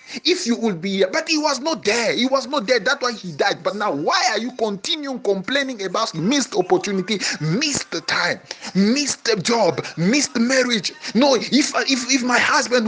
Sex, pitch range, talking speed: male, 195-270 Hz, 190 wpm